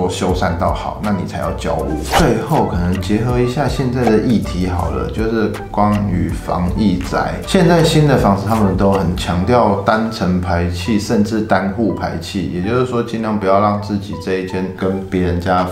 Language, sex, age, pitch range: Chinese, male, 20-39, 90-105 Hz